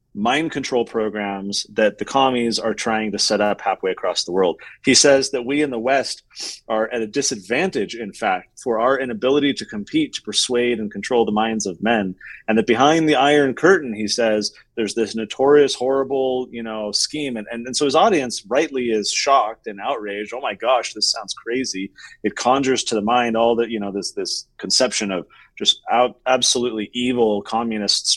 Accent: American